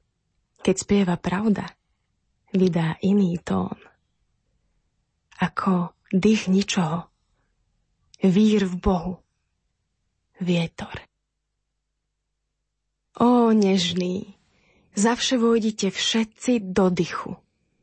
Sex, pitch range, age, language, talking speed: female, 180-205 Hz, 20-39, Slovak, 65 wpm